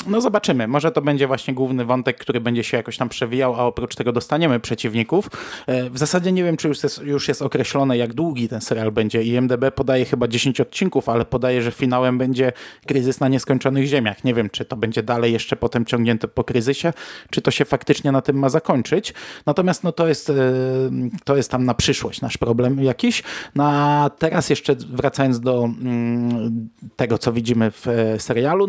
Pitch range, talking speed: 115-135 Hz, 185 wpm